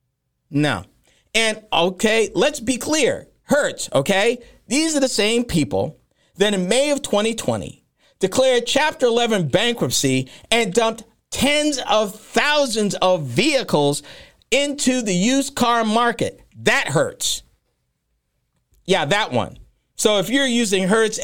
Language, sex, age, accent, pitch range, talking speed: English, male, 50-69, American, 175-260 Hz, 125 wpm